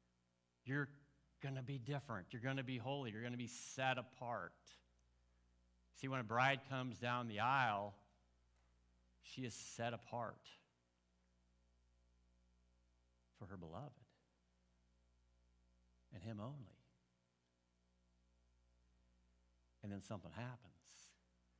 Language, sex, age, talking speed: English, male, 60-79, 105 wpm